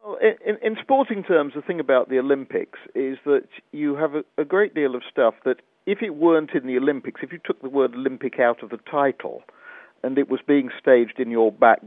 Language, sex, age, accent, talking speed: English, male, 50-69, British, 225 wpm